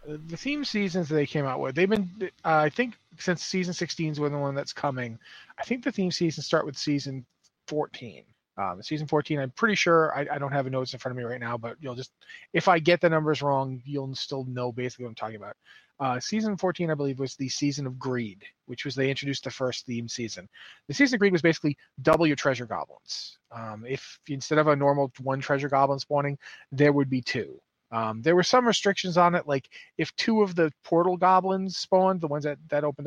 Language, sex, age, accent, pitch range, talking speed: English, male, 30-49, American, 135-175 Hz, 235 wpm